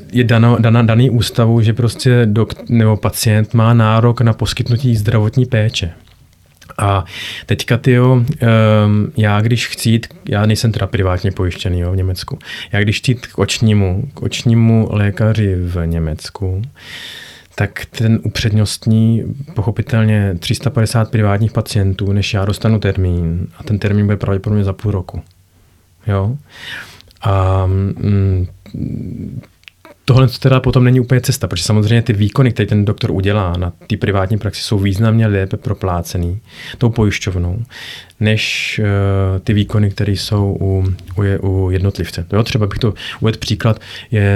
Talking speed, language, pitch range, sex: 145 wpm, Czech, 95-115 Hz, male